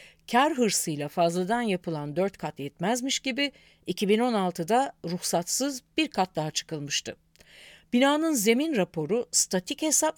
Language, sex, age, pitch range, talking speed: Turkish, female, 50-69, 165-235 Hz, 110 wpm